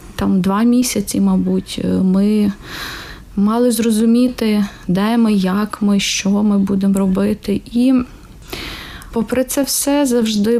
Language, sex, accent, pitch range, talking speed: Ukrainian, female, native, 195-245 Hz, 115 wpm